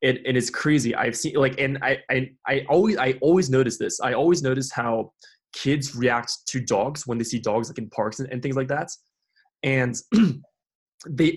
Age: 20-39